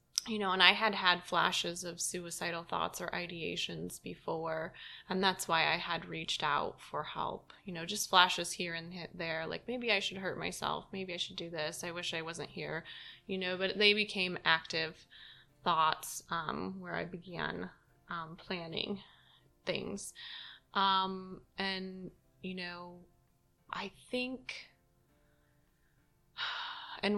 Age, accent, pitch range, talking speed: 20-39, American, 170-190 Hz, 145 wpm